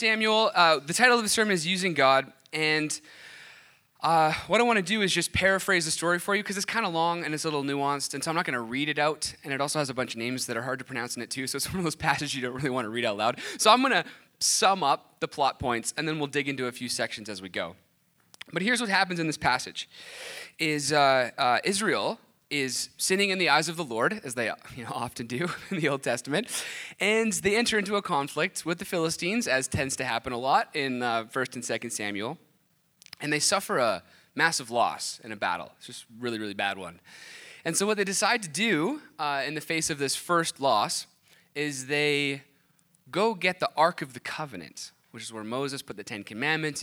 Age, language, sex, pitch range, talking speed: 20-39, English, male, 130-180 Hz, 245 wpm